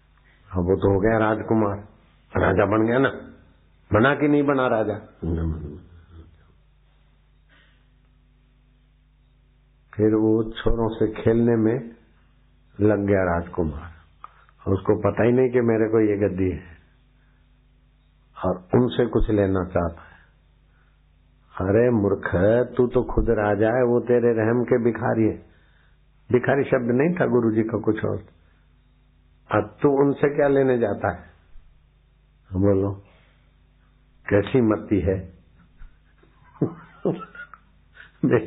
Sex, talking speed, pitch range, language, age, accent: male, 110 wpm, 90-125 Hz, Hindi, 60-79, native